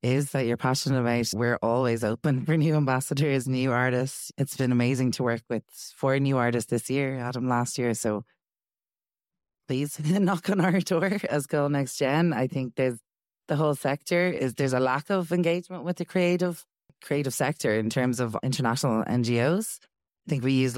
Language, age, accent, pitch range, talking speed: English, 20-39, Irish, 110-135 Hz, 180 wpm